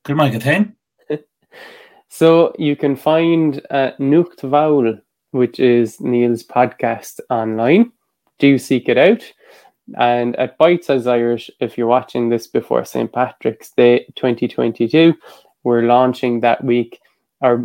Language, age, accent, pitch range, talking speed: English, 20-39, Irish, 120-150 Hz, 115 wpm